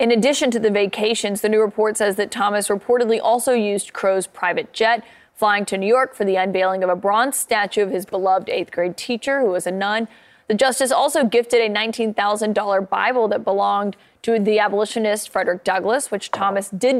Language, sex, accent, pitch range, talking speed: English, female, American, 200-240 Hz, 195 wpm